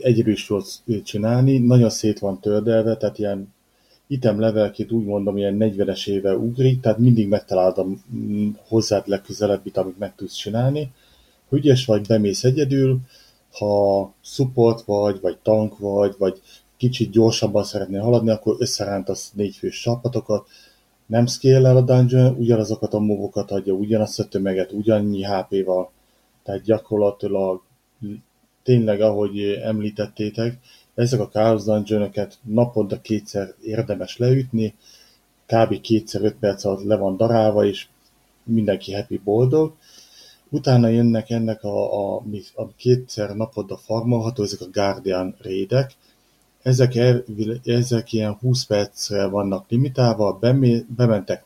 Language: Hungarian